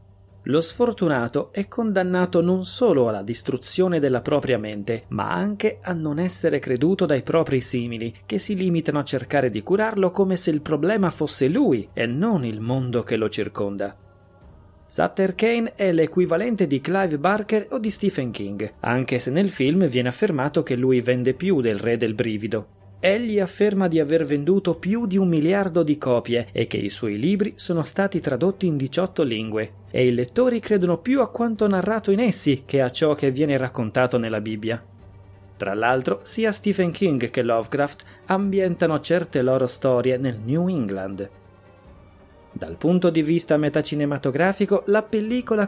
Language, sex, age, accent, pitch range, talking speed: Italian, male, 30-49, native, 120-180 Hz, 165 wpm